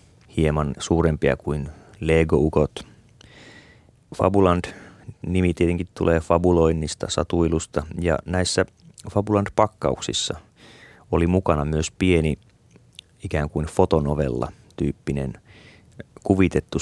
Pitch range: 80-95 Hz